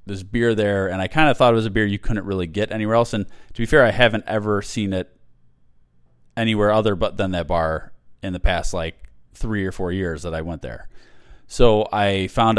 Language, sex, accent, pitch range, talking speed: English, male, American, 85-105 Hz, 230 wpm